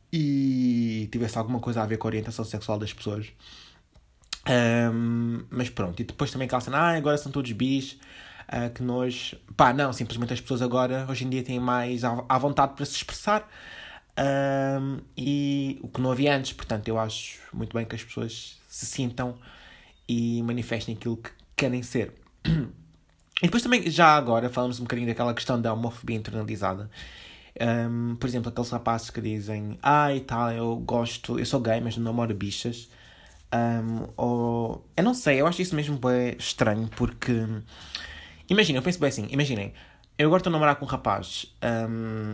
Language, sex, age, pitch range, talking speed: Portuguese, male, 20-39, 115-130 Hz, 175 wpm